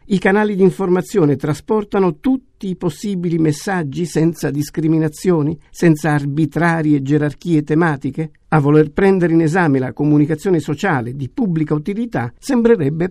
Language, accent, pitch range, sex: Italian, native, 145-185 Hz, male